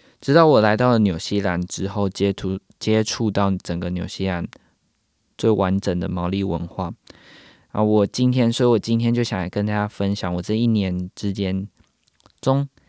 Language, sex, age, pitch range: Chinese, male, 20-39, 95-120 Hz